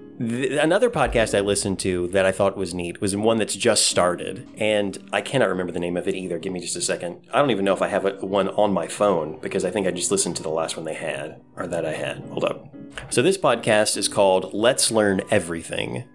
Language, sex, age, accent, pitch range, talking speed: English, male, 30-49, American, 95-110 Hz, 245 wpm